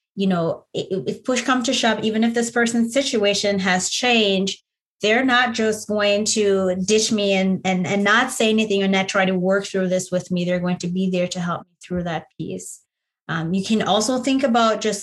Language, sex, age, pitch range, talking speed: English, female, 20-39, 185-235 Hz, 215 wpm